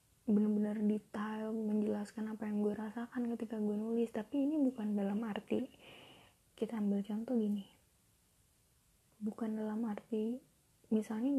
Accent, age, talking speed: native, 20-39, 120 wpm